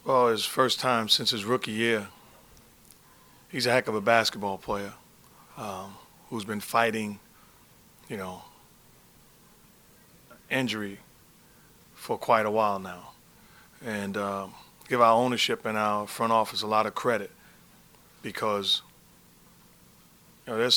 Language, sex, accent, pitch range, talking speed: English, male, American, 105-120 Hz, 125 wpm